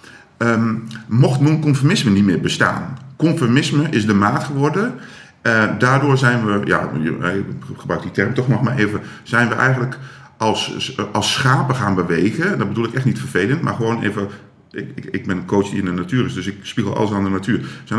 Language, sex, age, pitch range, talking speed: Dutch, male, 50-69, 105-135 Hz, 200 wpm